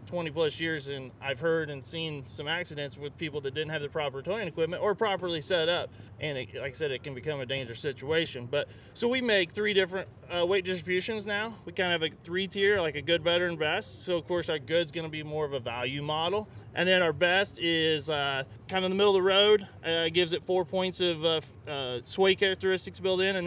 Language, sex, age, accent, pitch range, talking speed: English, male, 30-49, American, 145-185 Hz, 250 wpm